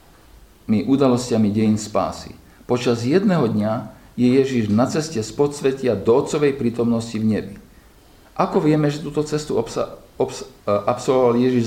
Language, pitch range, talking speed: Slovak, 110-145 Hz, 135 wpm